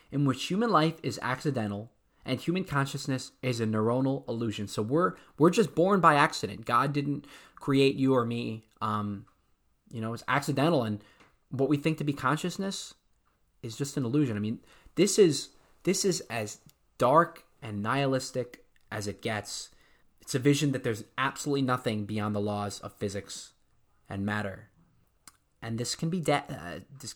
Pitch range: 110-145 Hz